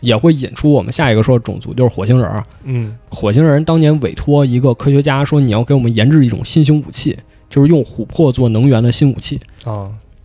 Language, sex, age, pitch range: Chinese, male, 20-39, 110-140 Hz